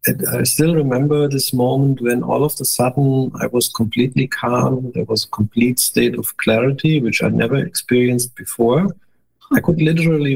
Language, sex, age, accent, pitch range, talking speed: English, male, 50-69, German, 120-145 Hz, 175 wpm